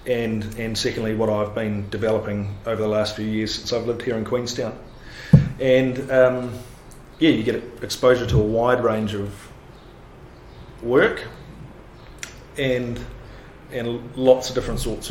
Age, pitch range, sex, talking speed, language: 30-49, 110-130 Hz, male, 145 wpm, English